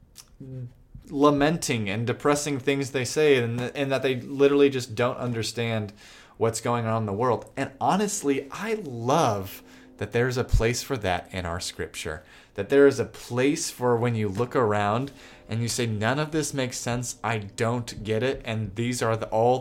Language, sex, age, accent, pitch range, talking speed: English, male, 20-39, American, 100-125 Hz, 180 wpm